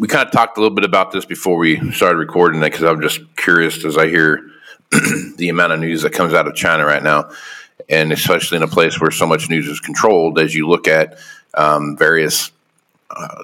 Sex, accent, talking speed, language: male, American, 225 wpm, English